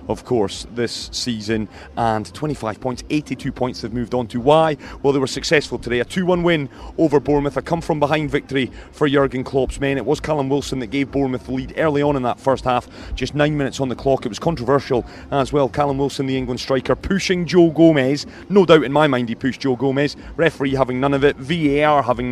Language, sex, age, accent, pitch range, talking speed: English, male, 30-49, British, 125-150 Hz, 225 wpm